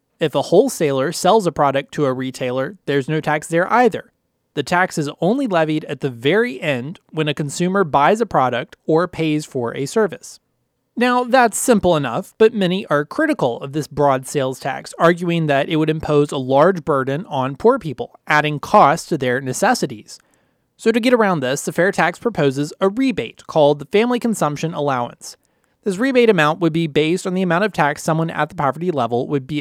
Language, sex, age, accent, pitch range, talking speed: English, male, 30-49, American, 140-185 Hz, 195 wpm